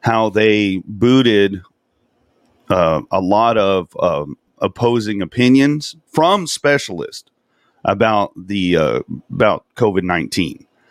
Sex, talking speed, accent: male, 100 wpm, American